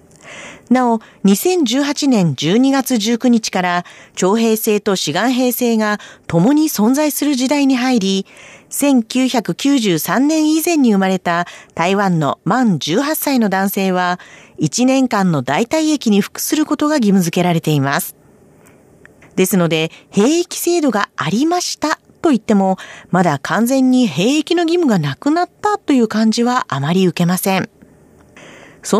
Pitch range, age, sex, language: 185-280 Hz, 40-59, female, Japanese